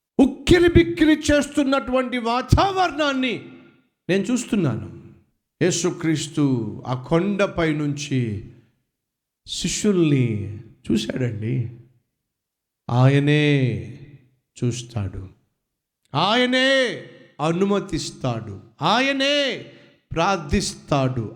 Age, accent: 50-69, native